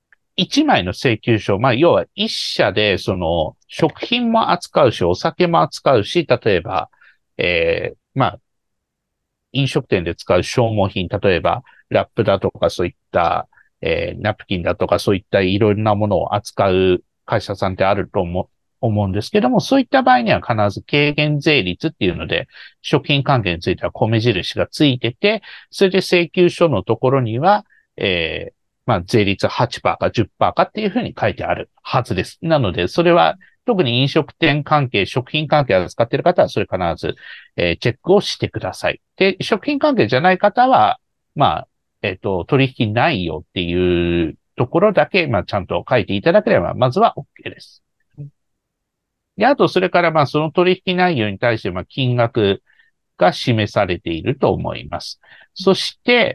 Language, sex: Japanese, male